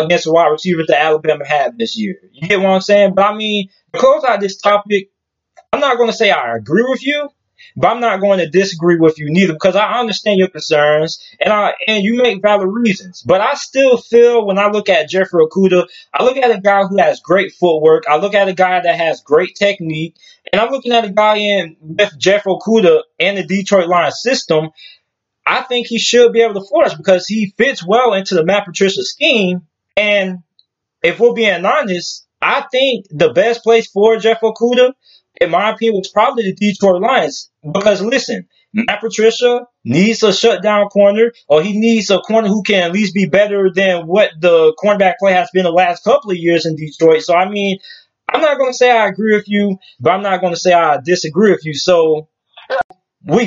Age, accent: 20-39, American